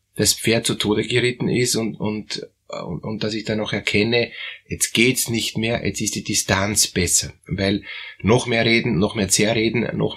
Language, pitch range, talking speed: German, 100-120 Hz, 190 wpm